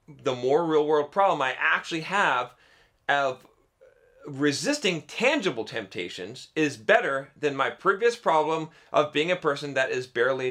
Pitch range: 110-165 Hz